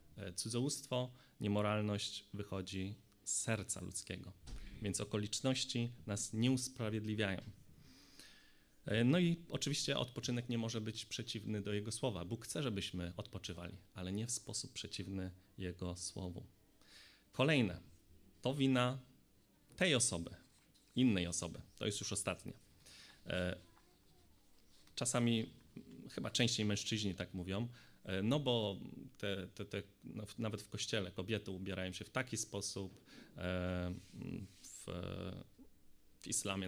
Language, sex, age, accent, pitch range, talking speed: Polish, male, 30-49, native, 95-115 Hz, 110 wpm